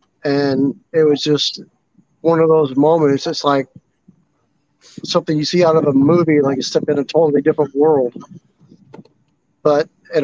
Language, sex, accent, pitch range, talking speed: English, male, American, 145-165 Hz, 160 wpm